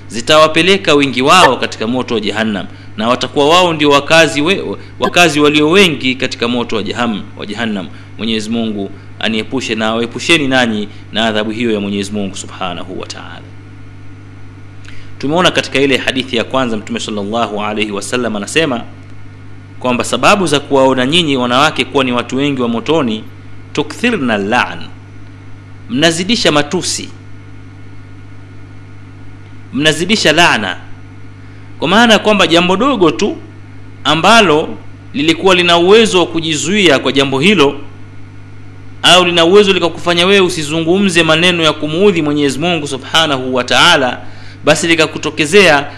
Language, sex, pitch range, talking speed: Swahili, male, 95-155 Hz, 125 wpm